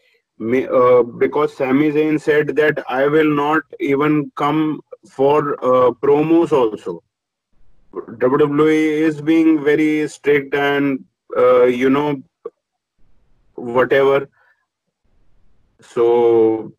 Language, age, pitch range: English, 30-49, 130-155 Hz